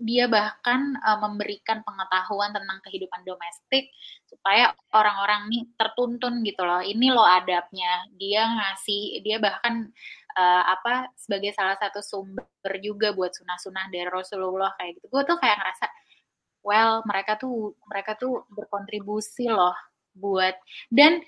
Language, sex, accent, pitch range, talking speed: English, female, Indonesian, 195-240 Hz, 135 wpm